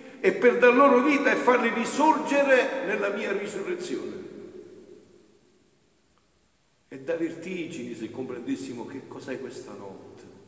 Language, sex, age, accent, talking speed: Italian, male, 50-69, native, 115 wpm